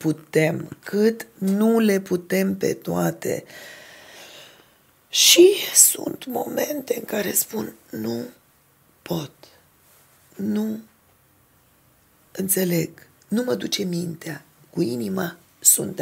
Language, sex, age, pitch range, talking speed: Romanian, female, 30-49, 165-275 Hz, 90 wpm